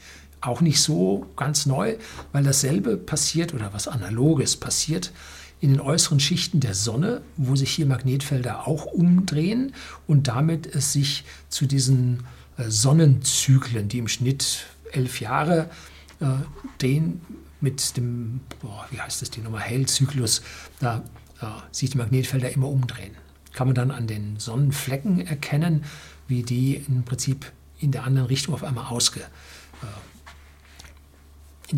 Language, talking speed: German, 140 wpm